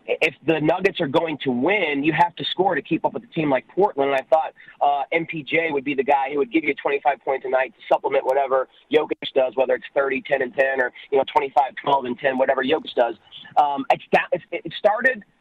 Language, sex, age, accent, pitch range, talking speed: English, male, 30-49, American, 155-210 Hz, 245 wpm